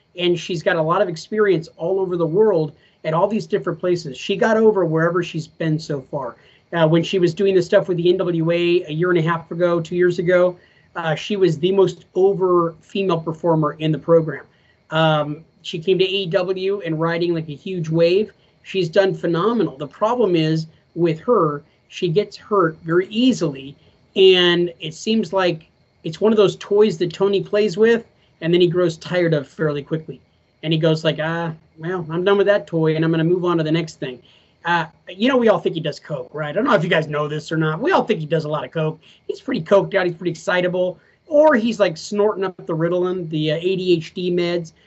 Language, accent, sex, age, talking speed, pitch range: English, American, male, 30-49, 225 wpm, 165-200 Hz